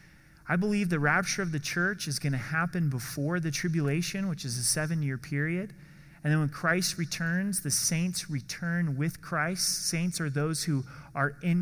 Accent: American